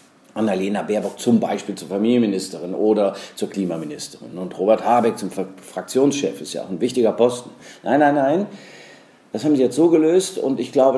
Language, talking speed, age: German, 175 wpm, 50-69